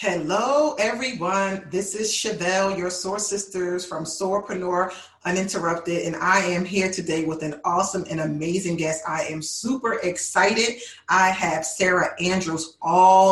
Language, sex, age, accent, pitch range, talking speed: English, female, 40-59, American, 165-190 Hz, 140 wpm